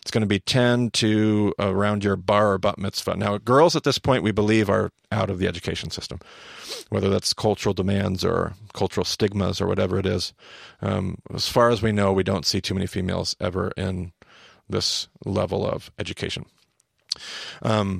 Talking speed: 185 wpm